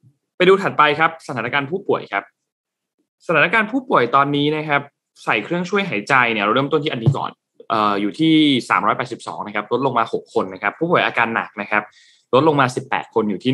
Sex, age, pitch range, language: male, 20-39, 115-160 Hz, Thai